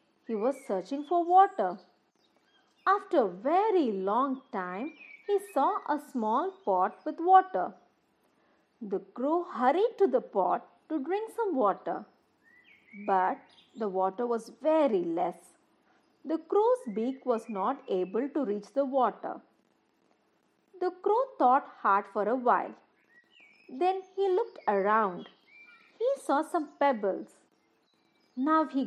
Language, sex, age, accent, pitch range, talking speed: English, female, 50-69, Indian, 220-360 Hz, 125 wpm